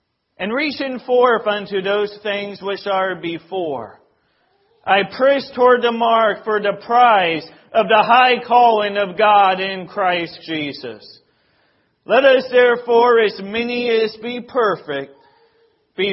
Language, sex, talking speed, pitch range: English, male, 130 wpm, 140-220 Hz